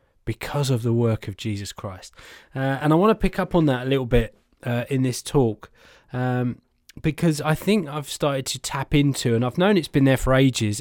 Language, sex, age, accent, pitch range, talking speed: English, male, 20-39, British, 120-155 Hz, 220 wpm